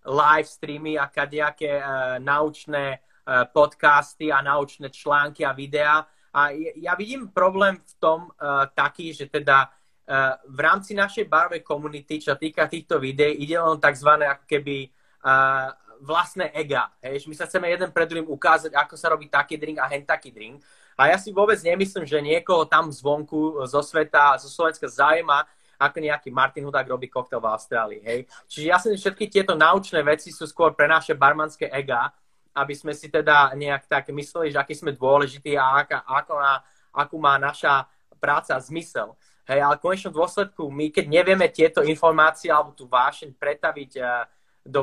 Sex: male